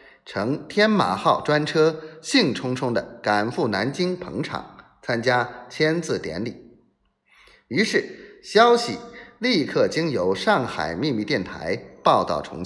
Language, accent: Chinese, native